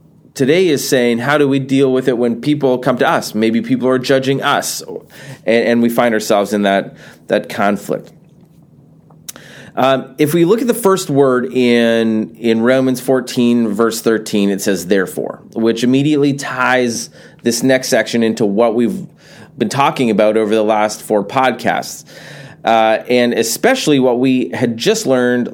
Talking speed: 165 wpm